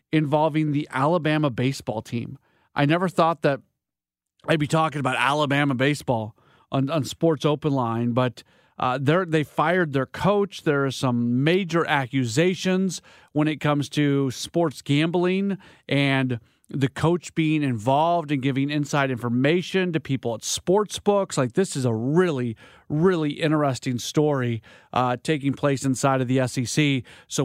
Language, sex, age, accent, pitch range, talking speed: English, male, 40-59, American, 135-175 Hz, 150 wpm